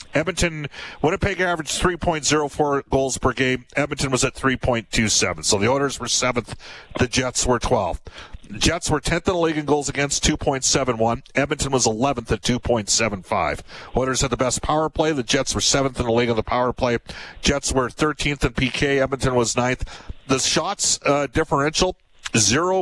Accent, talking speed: American, 205 wpm